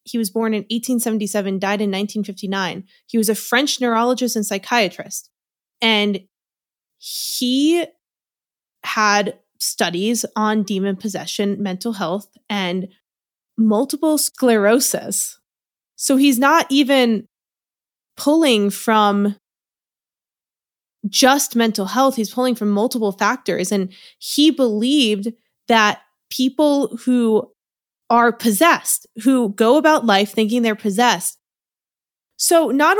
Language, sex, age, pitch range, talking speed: English, female, 20-39, 205-260 Hz, 105 wpm